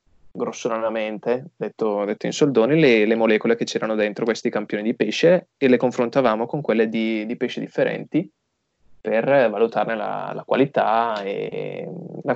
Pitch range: 115-135 Hz